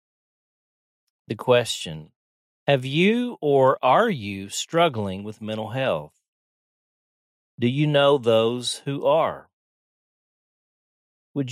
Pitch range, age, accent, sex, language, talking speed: 95-125 Hz, 40-59, American, male, English, 95 wpm